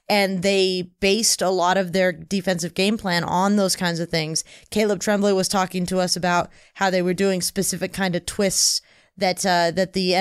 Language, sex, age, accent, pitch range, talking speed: English, female, 20-39, American, 180-210 Hz, 200 wpm